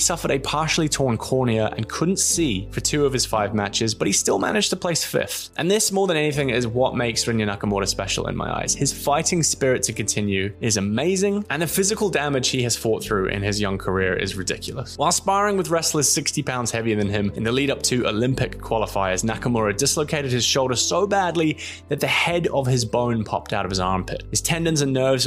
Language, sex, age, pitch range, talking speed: English, male, 20-39, 105-150 Hz, 220 wpm